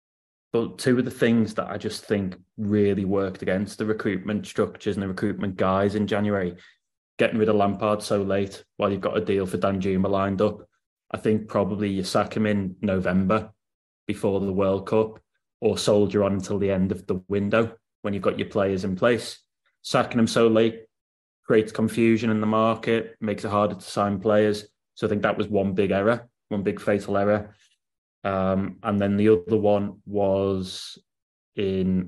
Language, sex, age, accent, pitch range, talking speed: English, male, 20-39, British, 95-110 Hz, 185 wpm